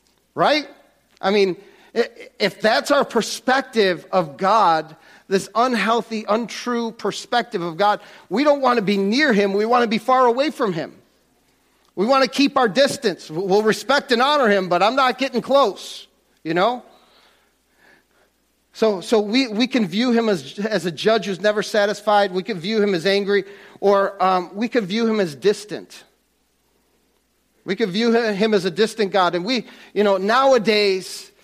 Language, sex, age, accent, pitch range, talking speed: English, male, 40-59, American, 195-235 Hz, 170 wpm